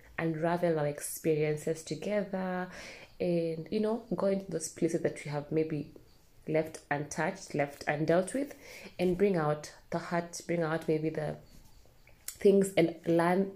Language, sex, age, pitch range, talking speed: English, female, 20-39, 155-175 Hz, 140 wpm